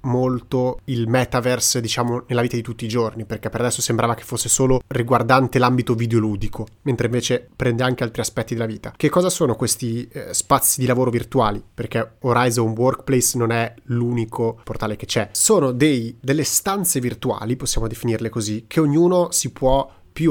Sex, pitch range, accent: male, 115-150 Hz, native